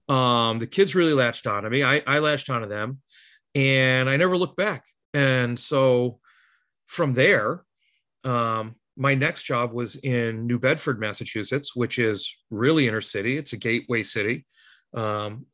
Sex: male